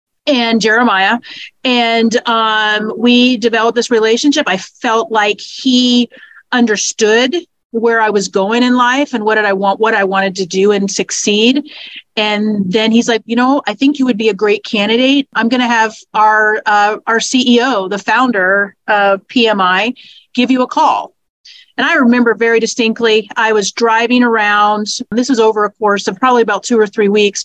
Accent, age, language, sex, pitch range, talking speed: American, 40-59, English, female, 205-240 Hz, 180 wpm